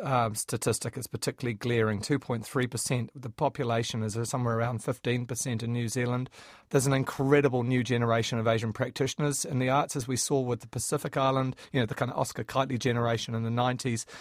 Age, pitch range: 40-59, 125-145 Hz